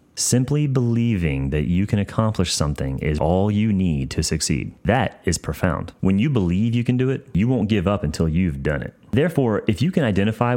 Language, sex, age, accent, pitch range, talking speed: English, male, 30-49, American, 85-115 Hz, 205 wpm